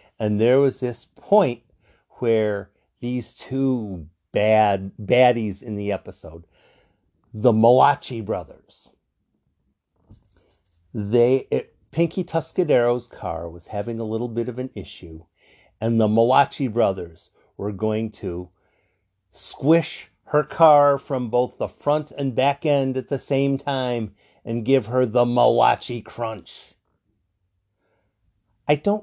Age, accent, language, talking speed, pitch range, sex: 50-69, American, English, 120 wpm, 105-160 Hz, male